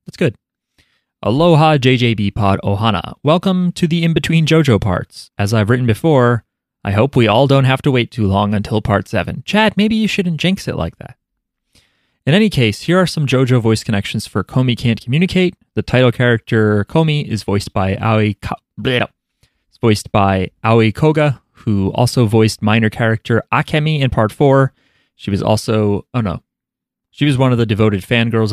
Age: 30-49